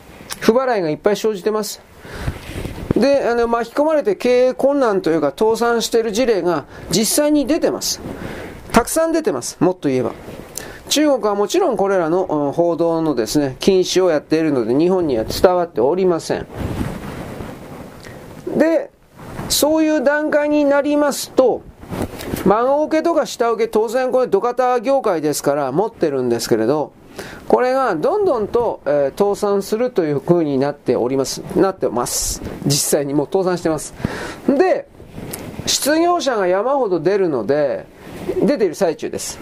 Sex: male